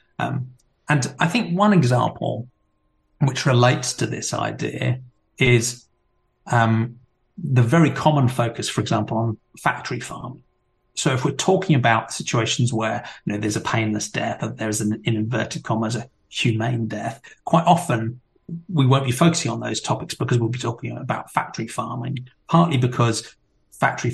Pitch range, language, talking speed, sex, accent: 115-145 Hz, English, 160 wpm, male, British